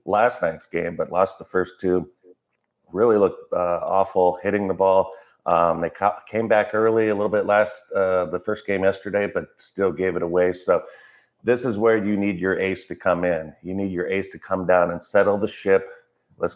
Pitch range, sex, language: 90-105 Hz, male, English